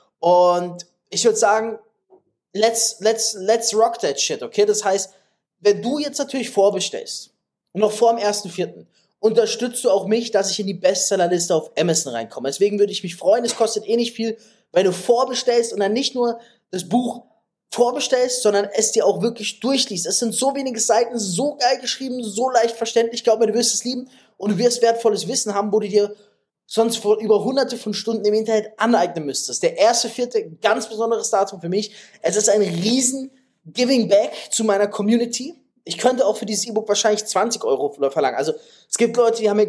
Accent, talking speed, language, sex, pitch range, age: German, 195 wpm, German, male, 205-240 Hz, 20-39